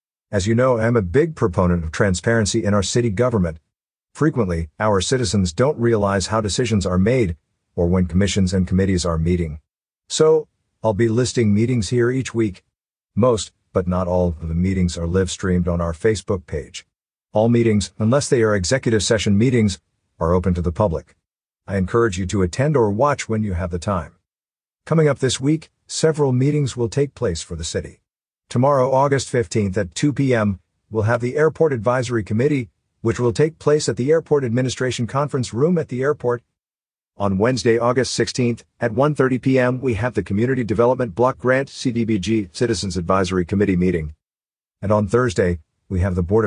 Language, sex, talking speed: English, male, 180 wpm